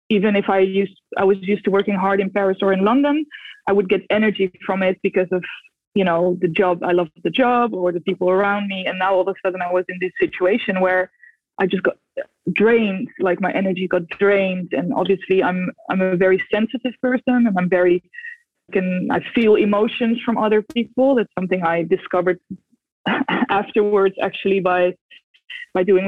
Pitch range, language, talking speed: 180-220 Hz, English, 195 wpm